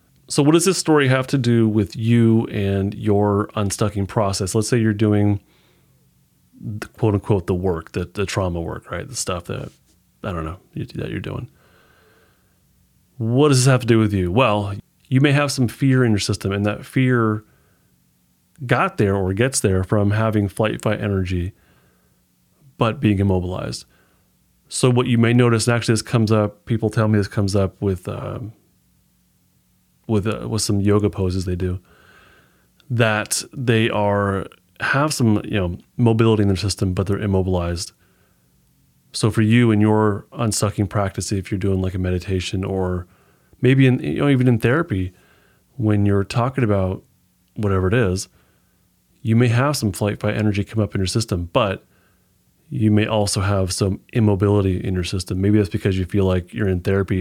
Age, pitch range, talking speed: 30-49, 95-115 Hz, 175 wpm